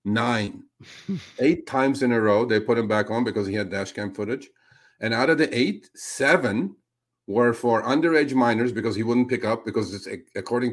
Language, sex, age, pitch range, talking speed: English, male, 50-69, 115-145 Hz, 195 wpm